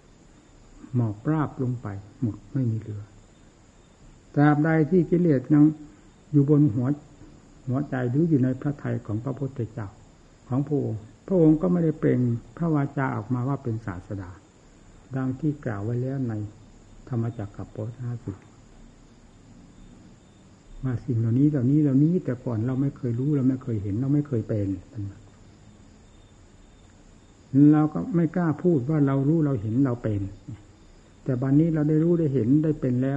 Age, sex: 60-79, male